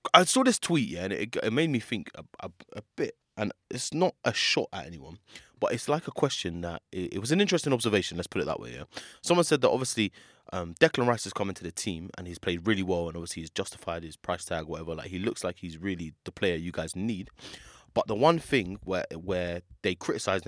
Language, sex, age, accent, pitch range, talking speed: English, male, 20-39, British, 90-135 Hz, 245 wpm